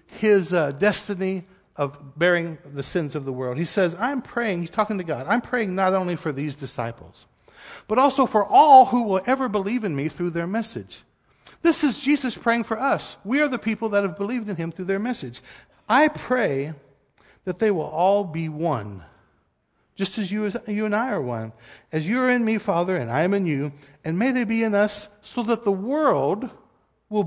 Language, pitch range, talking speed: English, 155-240 Hz, 205 wpm